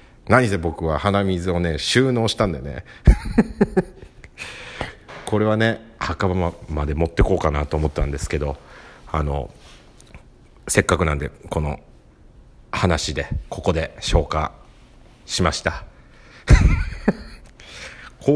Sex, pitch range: male, 80-130 Hz